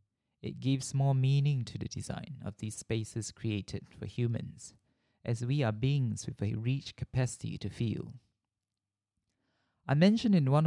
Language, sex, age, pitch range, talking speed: English, male, 20-39, 110-135 Hz, 150 wpm